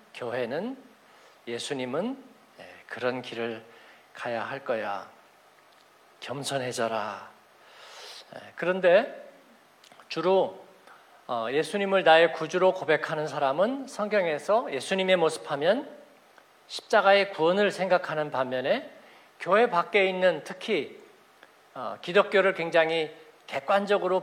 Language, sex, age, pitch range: Korean, male, 50-69, 135-195 Hz